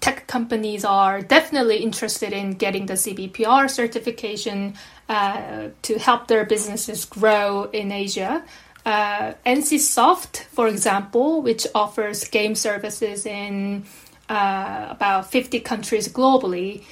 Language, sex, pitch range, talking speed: English, female, 210-245 Hz, 115 wpm